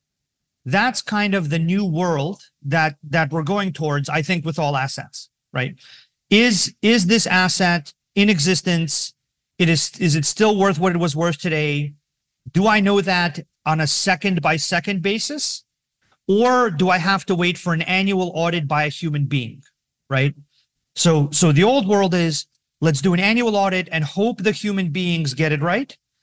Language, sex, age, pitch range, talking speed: English, male, 40-59, 150-195 Hz, 175 wpm